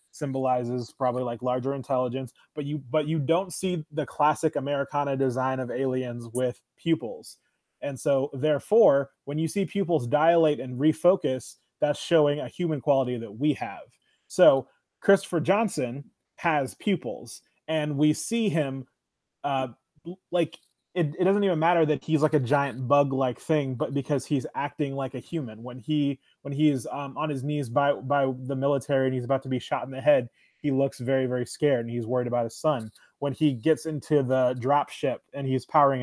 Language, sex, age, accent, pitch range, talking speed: English, male, 20-39, American, 130-155 Hz, 180 wpm